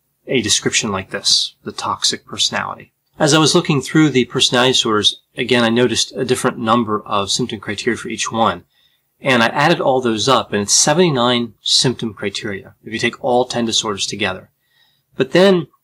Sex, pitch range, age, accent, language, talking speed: male, 115-140 Hz, 30-49, American, English, 180 wpm